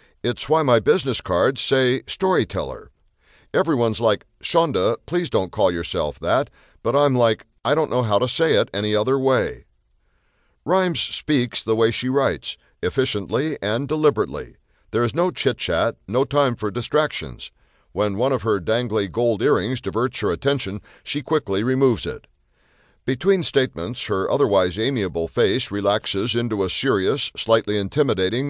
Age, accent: 60-79, American